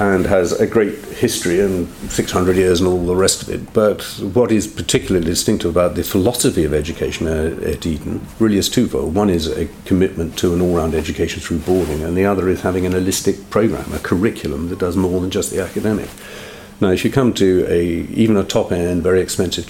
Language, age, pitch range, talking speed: English, 50-69, 90-105 Hz, 205 wpm